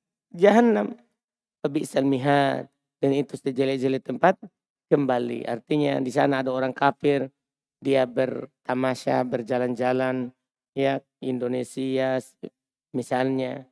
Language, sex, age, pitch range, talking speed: Indonesian, male, 40-59, 135-175 Hz, 90 wpm